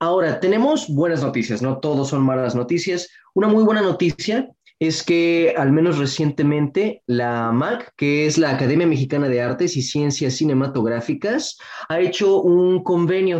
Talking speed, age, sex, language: 150 wpm, 20-39, male, Spanish